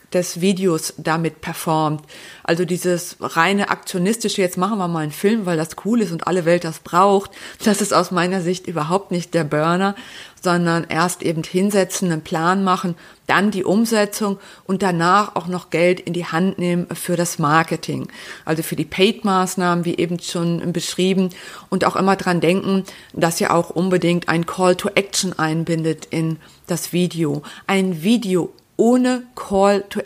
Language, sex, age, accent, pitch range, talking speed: German, female, 30-49, German, 170-195 Hz, 165 wpm